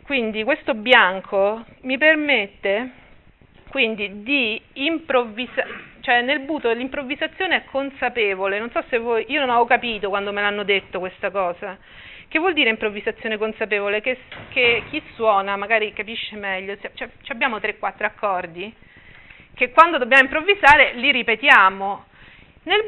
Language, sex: Italian, female